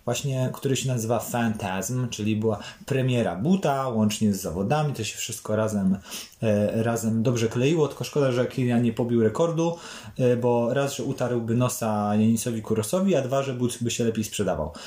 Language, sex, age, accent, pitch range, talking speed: Polish, male, 30-49, native, 115-150 Hz, 165 wpm